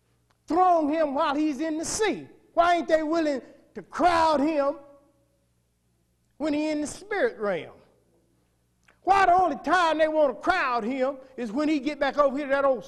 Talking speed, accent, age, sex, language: 180 wpm, American, 50-69, male, English